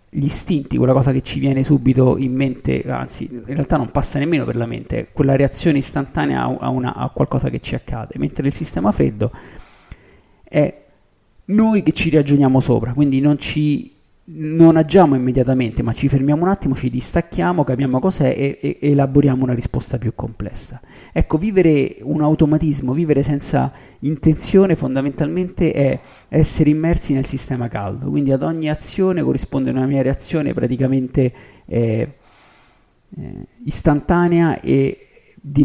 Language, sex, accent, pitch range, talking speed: Italian, male, native, 125-155 Hz, 150 wpm